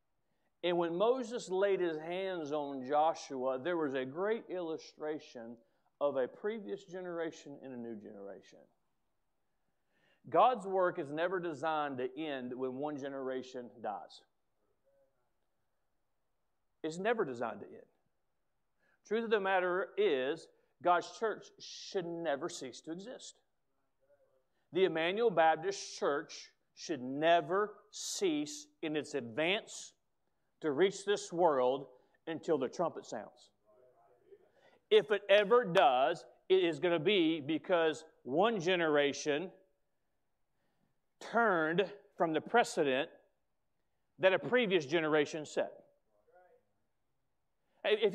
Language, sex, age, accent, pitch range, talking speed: English, male, 50-69, American, 155-230 Hz, 110 wpm